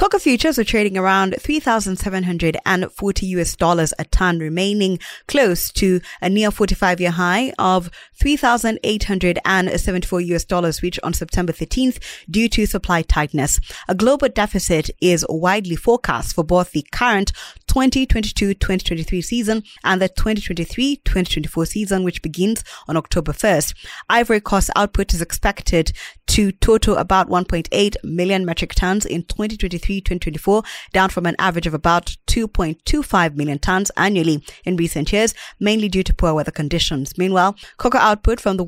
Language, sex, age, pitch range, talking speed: English, female, 20-39, 170-205 Hz, 140 wpm